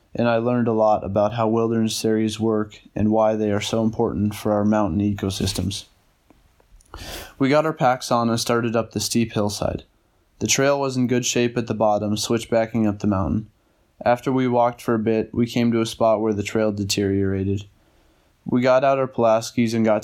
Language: English